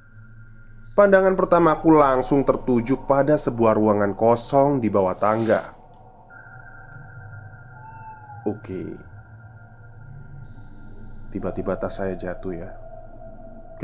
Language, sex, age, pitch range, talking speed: Indonesian, male, 20-39, 110-140 Hz, 80 wpm